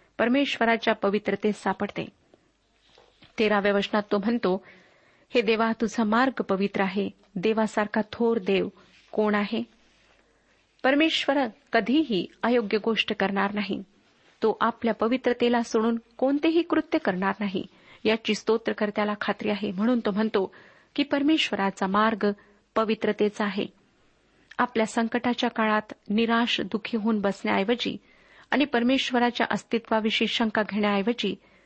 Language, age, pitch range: Marathi, 40-59, 210-245 Hz